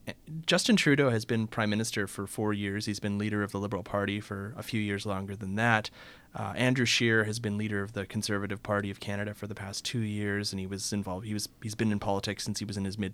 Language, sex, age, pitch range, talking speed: English, male, 30-49, 105-125 Hz, 255 wpm